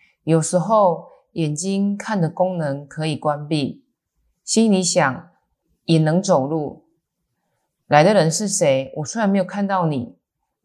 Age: 20-39